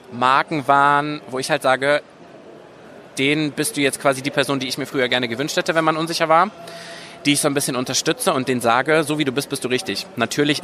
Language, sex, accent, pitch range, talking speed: German, male, German, 125-150 Hz, 230 wpm